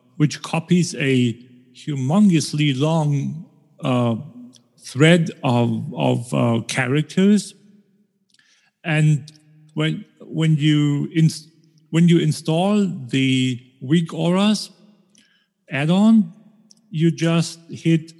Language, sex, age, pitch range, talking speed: English, male, 50-69, 135-180 Hz, 85 wpm